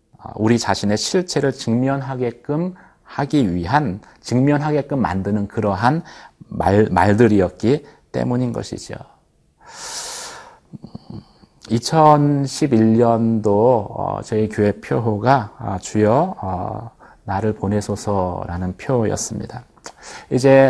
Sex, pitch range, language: male, 100-140 Hz, Korean